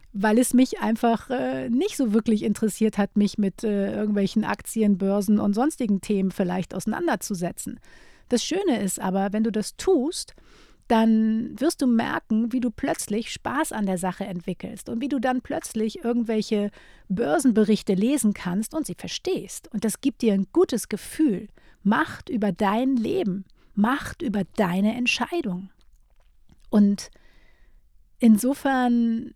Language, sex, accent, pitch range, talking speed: German, female, German, 200-245 Hz, 145 wpm